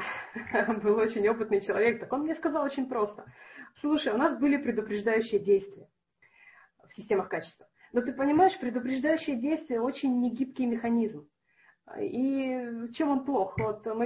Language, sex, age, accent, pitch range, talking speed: Russian, female, 30-49, native, 200-270 Hz, 145 wpm